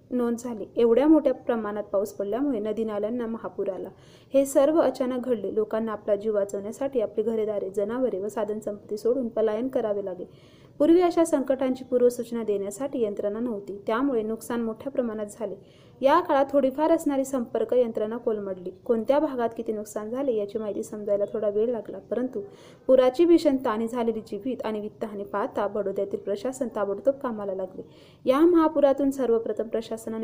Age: 30-49